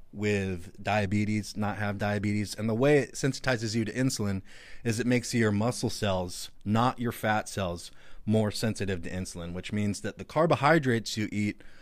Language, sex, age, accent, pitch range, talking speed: English, male, 30-49, American, 95-120 Hz, 175 wpm